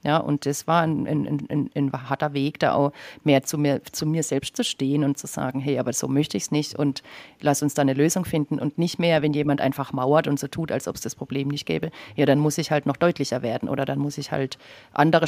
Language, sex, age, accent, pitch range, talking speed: German, female, 40-59, German, 140-160 Hz, 270 wpm